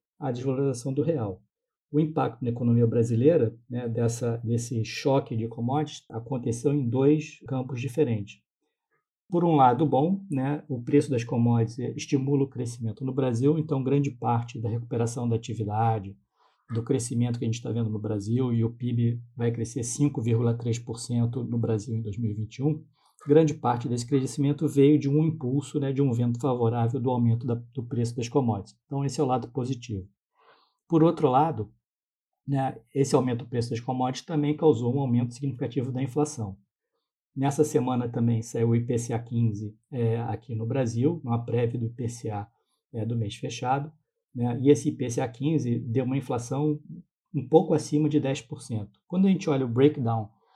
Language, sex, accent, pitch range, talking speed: Portuguese, male, Brazilian, 115-145 Hz, 165 wpm